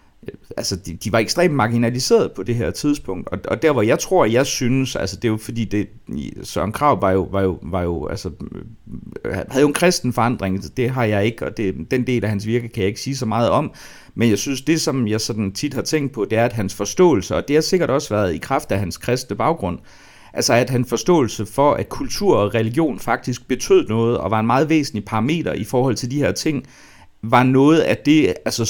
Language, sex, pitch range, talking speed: Danish, male, 100-130 Hz, 240 wpm